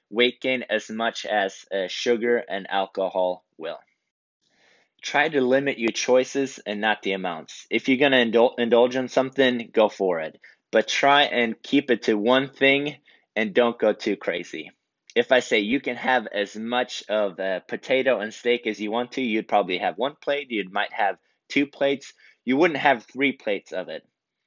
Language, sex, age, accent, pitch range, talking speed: English, male, 20-39, American, 105-135 Hz, 185 wpm